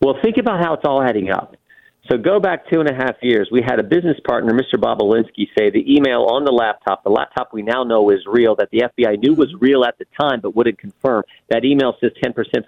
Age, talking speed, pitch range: 50-69, 245 wpm, 120-170 Hz